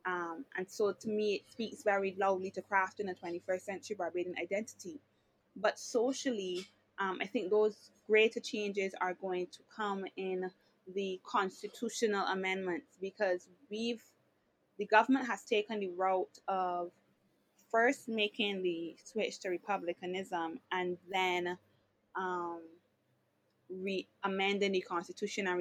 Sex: female